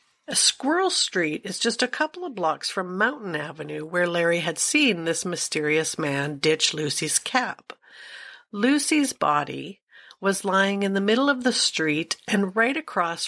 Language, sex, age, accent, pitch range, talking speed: English, female, 50-69, American, 155-230 Hz, 155 wpm